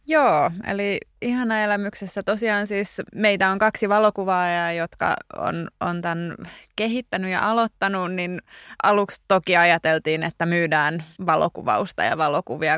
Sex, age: female, 20-39